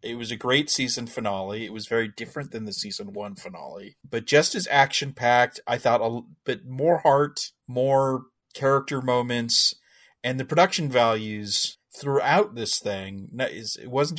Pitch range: 110-135 Hz